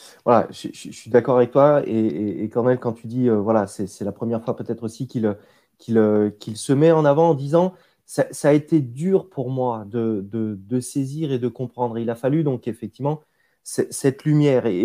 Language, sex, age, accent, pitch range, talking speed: French, male, 20-39, French, 115-145 Hz, 215 wpm